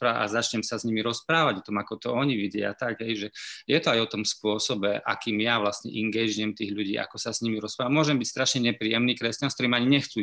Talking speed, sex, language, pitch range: 230 wpm, male, Slovak, 110-140 Hz